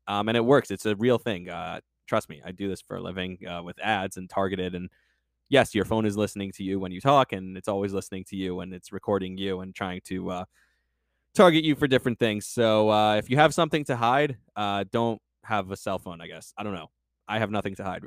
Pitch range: 100-130 Hz